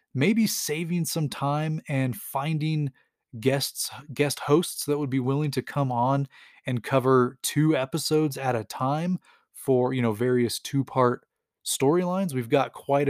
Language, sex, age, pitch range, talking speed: English, male, 20-39, 125-155 Hz, 150 wpm